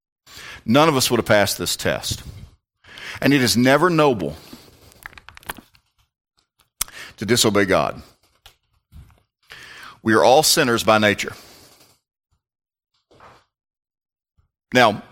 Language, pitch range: English, 95-125 Hz